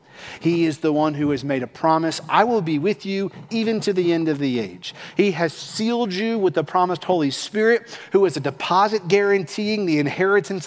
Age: 40-59